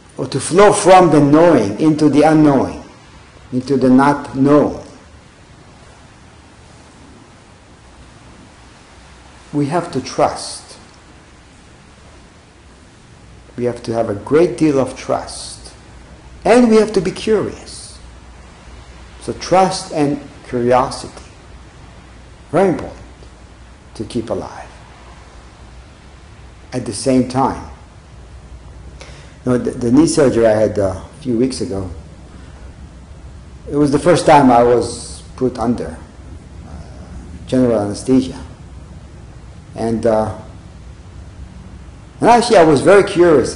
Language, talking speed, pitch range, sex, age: English, 105 wpm, 85-130 Hz, male, 50-69